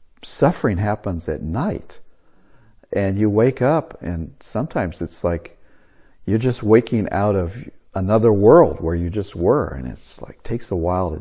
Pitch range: 95-125 Hz